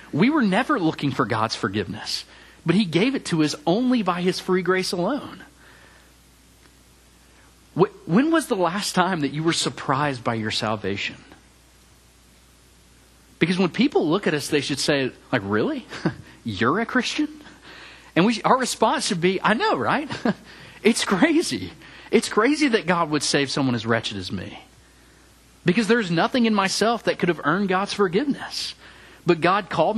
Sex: male